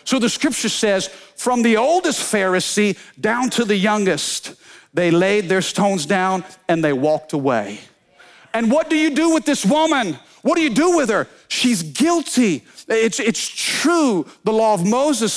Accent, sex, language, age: American, male, English, 50-69